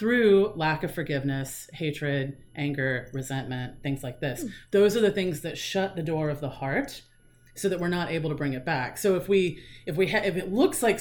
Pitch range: 145-195 Hz